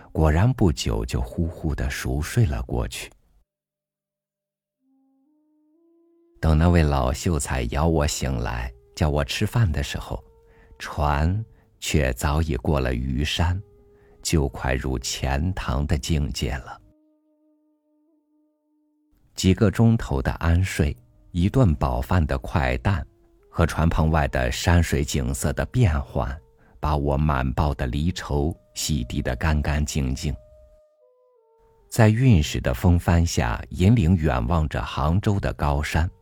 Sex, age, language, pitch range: male, 50-69, Chinese, 75-115 Hz